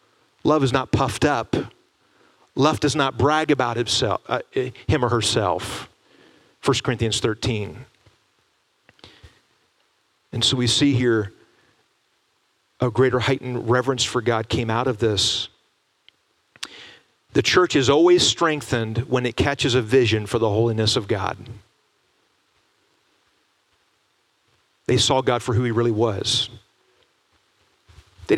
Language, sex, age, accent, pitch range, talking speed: English, male, 40-59, American, 120-165 Hz, 120 wpm